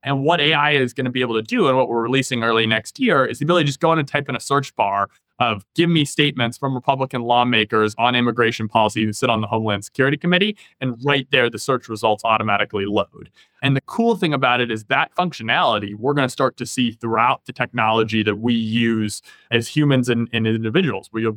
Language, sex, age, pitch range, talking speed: English, male, 20-39, 110-140 Hz, 235 wpm